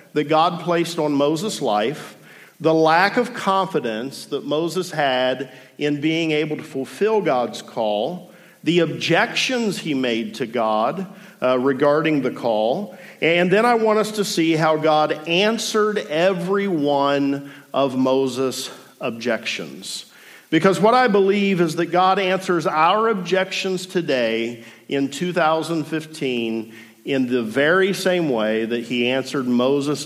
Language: English